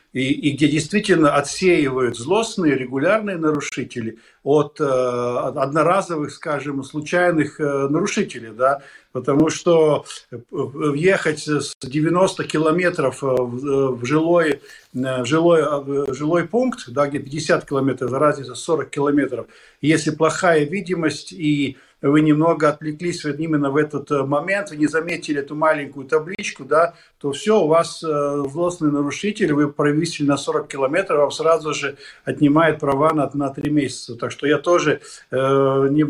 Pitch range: 140-165 Hz